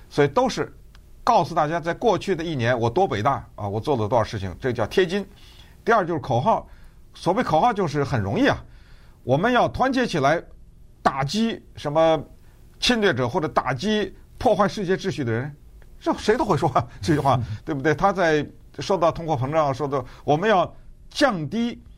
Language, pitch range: Chinese, 115-165 Hz